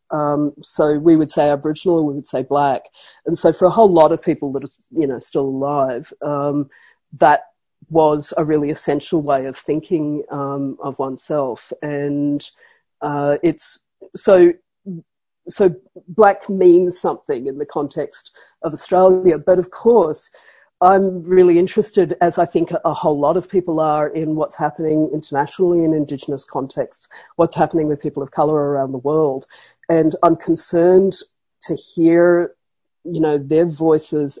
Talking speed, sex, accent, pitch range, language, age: 155 wpm, female, Australian, 145-175 Hz, English, 50-69